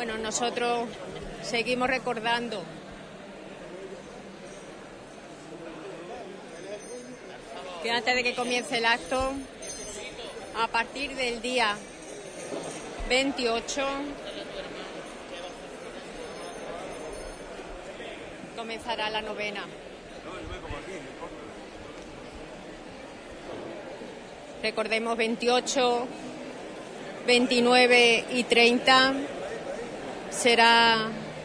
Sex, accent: female, Spanish